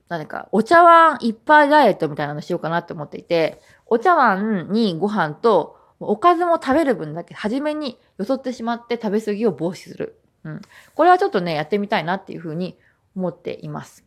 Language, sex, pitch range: Japanese, female, 170-245 Hz